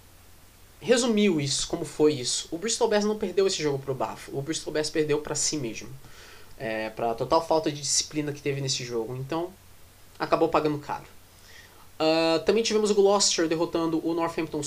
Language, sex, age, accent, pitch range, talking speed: Portuguese, male, 20-39, Brazilian, 140-170 Hz, 180 wpm